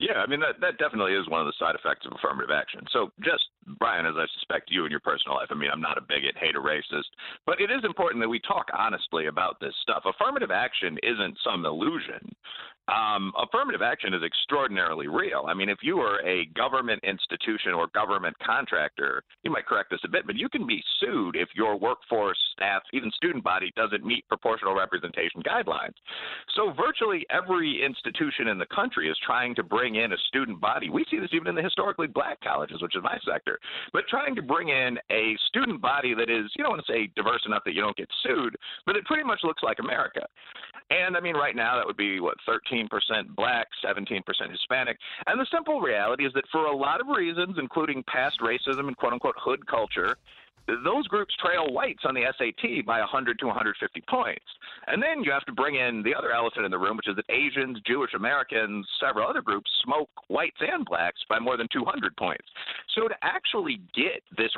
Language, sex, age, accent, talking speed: English, male, 50-69, American, 215 wpm